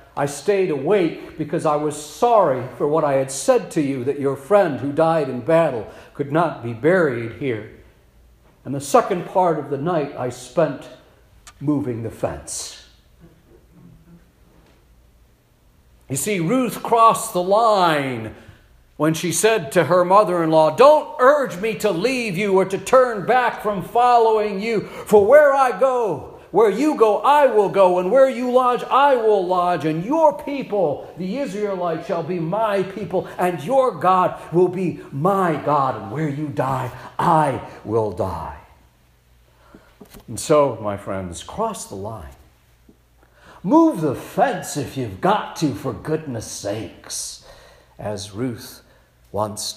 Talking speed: 150 wpm